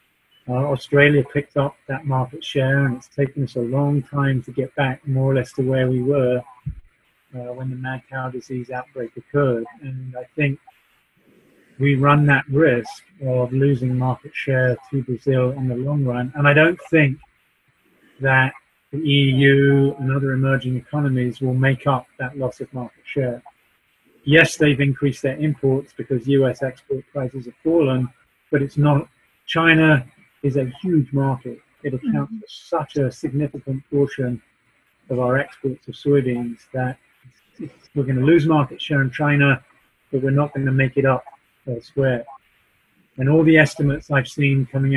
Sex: male